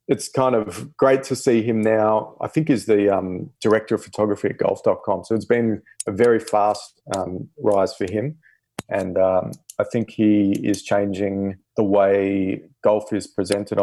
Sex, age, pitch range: male, 30-49, 100-115 Hz